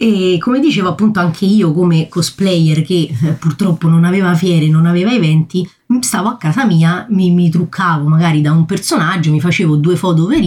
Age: 30-49